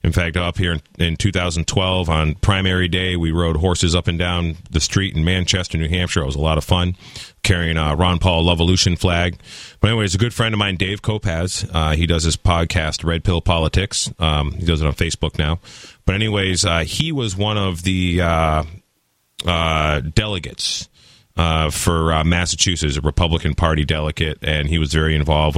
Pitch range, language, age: 80-100 Hz, English, 30-49